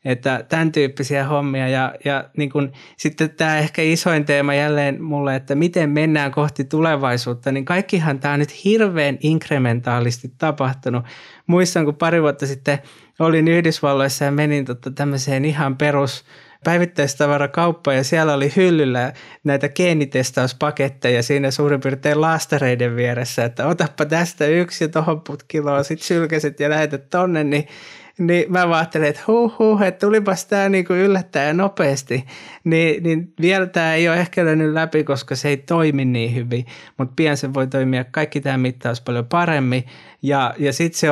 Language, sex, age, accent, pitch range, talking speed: Finnish, male, 20-39, native, 135-160 Hz, 145 wpm